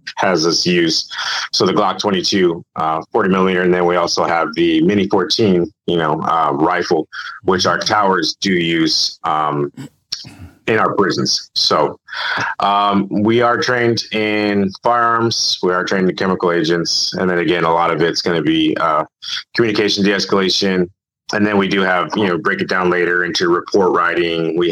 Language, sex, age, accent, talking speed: English, male, 30-49, American, 175 wpm